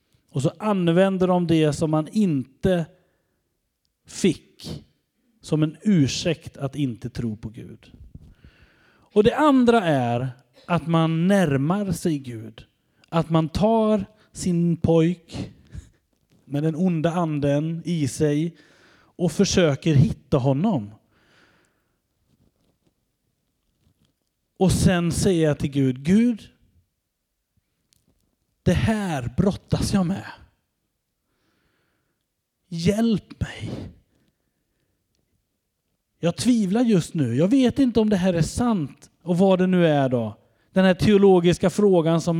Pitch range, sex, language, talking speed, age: 140-195 Hz, male, Swedish, 110 wpm, 30-49